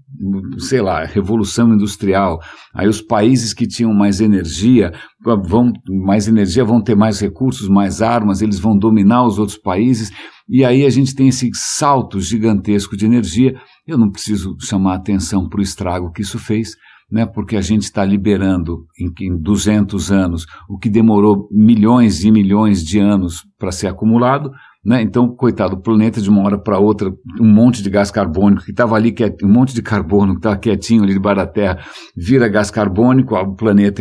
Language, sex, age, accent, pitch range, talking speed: English, male, 60-79, Brazilian, 100-115 Hz, 180 wpm